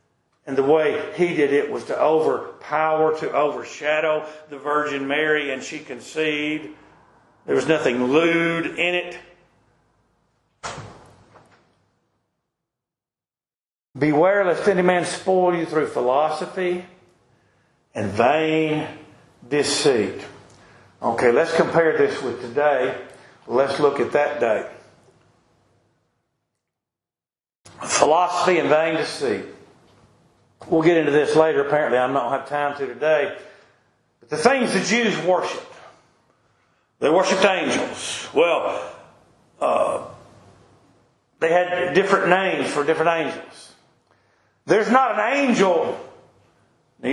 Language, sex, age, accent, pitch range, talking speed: English, male, 50-69, American, 150-195 Hz, 105 wpm